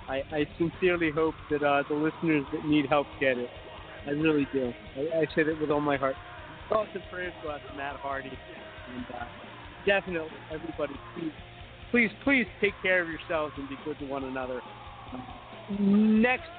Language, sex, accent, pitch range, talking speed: English, male, American, 135-180 Hz, 175 wpm